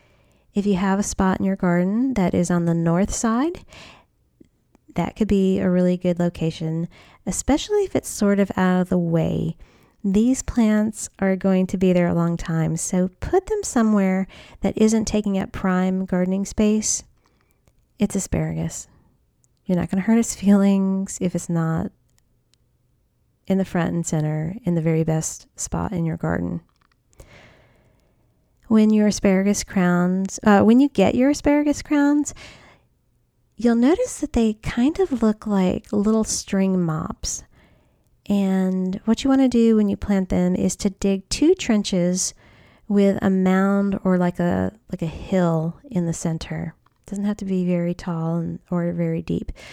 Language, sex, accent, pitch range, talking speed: English, female, American, 175-215 Hz, 160 wpm